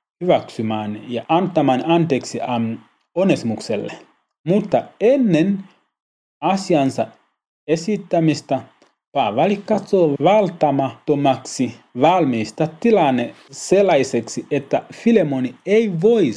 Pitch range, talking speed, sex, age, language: 120-175 Hz, 70 wpm, male, 30-49, Finnish